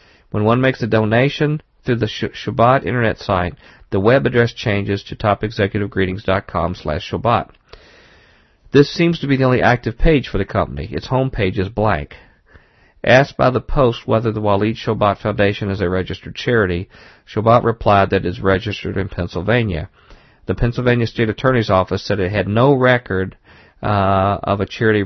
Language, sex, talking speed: English, male, 170 wpm